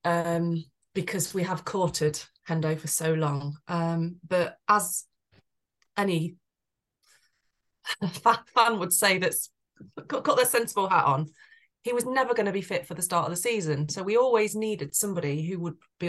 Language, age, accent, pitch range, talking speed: English, 20-39, British, 165-190 Hz, 165 wpm